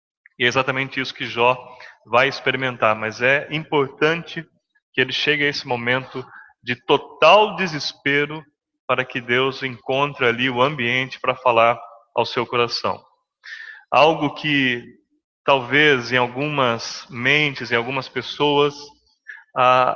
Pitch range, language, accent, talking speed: 125-155 Hz, English, Brazilian, 125 wpm